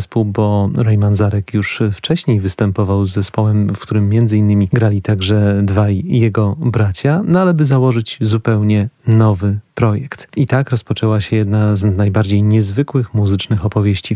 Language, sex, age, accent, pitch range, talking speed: Polish, male, 40-59, native, 105-120 Hz, 145 wpm